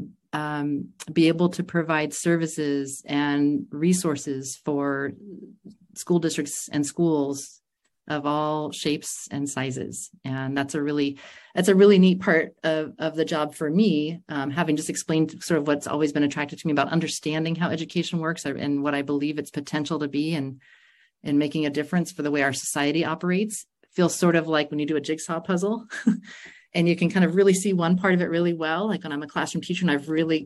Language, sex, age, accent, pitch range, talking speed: English, female, 40-59, American, 145-180 Hz, 200 wpm